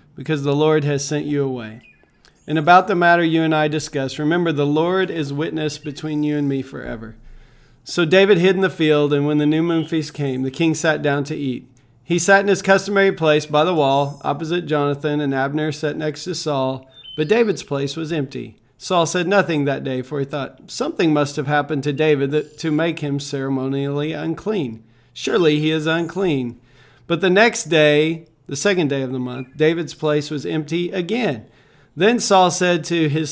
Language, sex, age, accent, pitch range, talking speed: English, male, 40-59, American, 140-170 Hz, 195 wpm